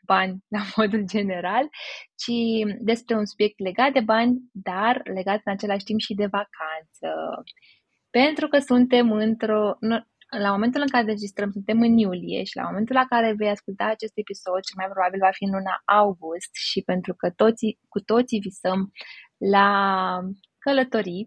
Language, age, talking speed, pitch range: Romanian, 20-39, 160 wpm, 195-250 Hz